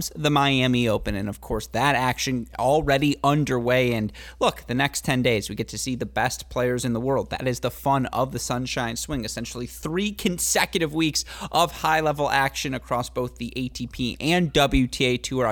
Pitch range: 120-145 Hz